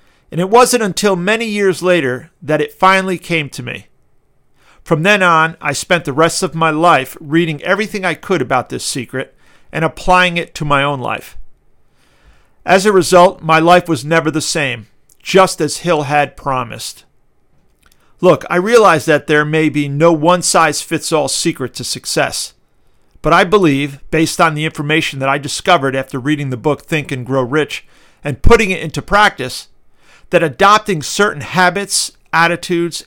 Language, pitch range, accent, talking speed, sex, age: English, 140-180 Hz, American, 165 wpm, male, 50-69